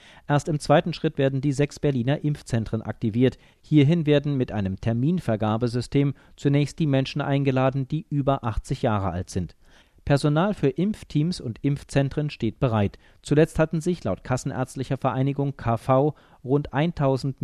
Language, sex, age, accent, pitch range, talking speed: German, male, 40-59, German, 120-150 Hz, 140 wpm